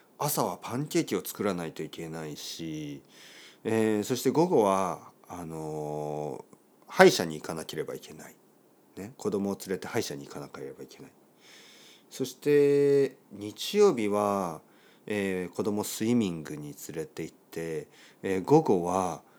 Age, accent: 40-59, native